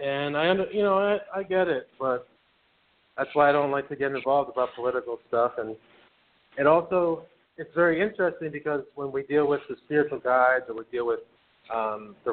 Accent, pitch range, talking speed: American, 120-150 Hz, 200 wpm